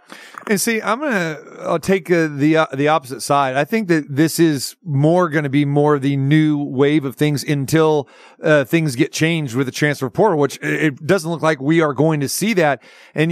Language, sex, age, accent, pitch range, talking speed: English, male, 40-59, American, 150-175 Hz, 215 wpm